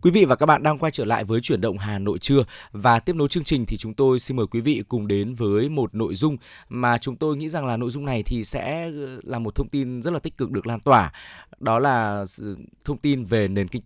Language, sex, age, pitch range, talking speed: Vietnamese, male, 20-39, 115-145 Hz, 270 wpm